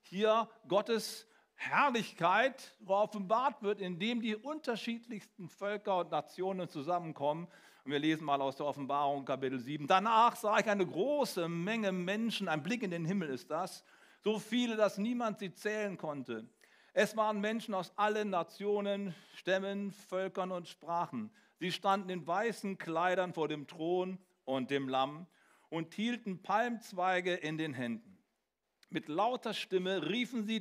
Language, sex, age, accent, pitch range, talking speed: German, male, 50-69, German, 155-215 Hz, 145 wpm